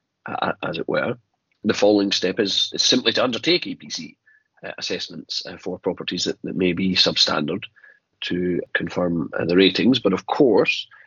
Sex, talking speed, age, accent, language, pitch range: male, 170 wpm, 30-49, British, English, 95-150 Hz